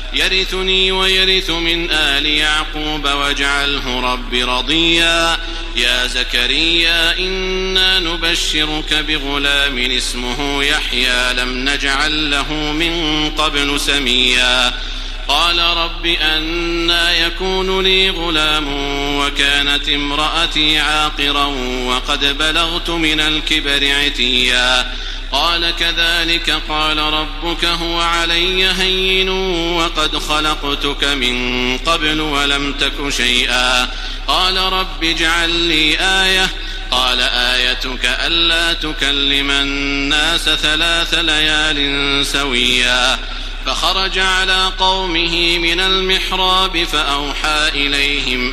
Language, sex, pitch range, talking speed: Arabic, male, 140-170 Hz, 85 wpm